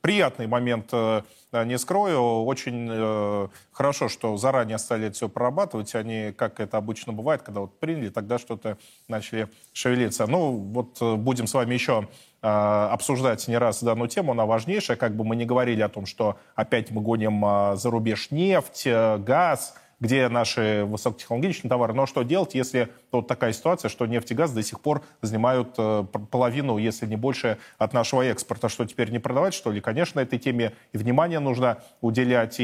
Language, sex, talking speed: Russian, male, 165 wpm